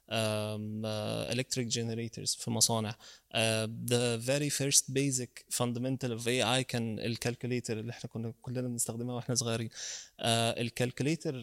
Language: Arabic